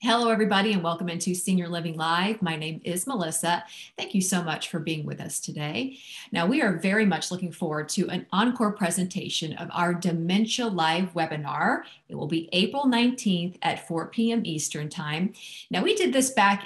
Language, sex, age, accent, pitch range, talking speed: English, female, 40-59, American, 175-225 Hz, 185 wpm